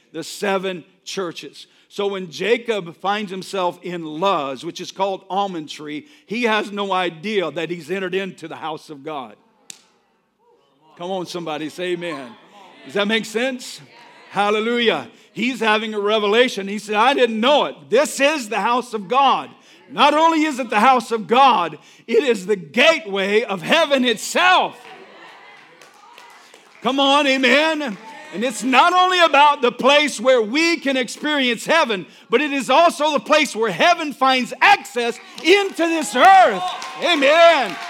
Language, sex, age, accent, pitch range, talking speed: English, male, 50-69, American, 195-290 Hz, 155 wpm